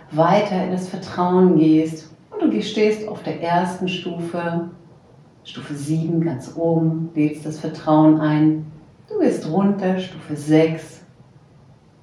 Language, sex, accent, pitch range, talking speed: German, female, German, 155-200 Hz, 125 wpm